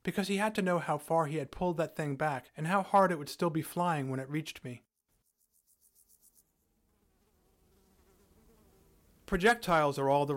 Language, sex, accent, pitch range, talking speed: English, male, American, 135-175 Hz, 170 wpm